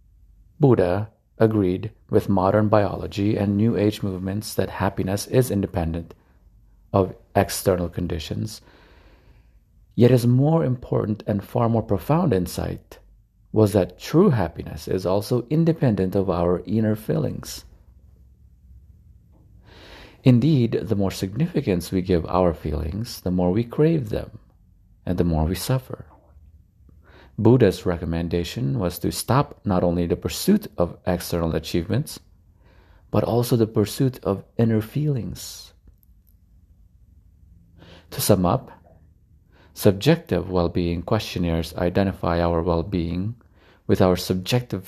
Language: English